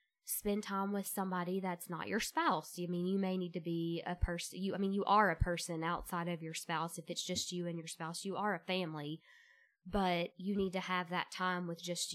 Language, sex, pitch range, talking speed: English, female, 170-195 Hz, 240 wpm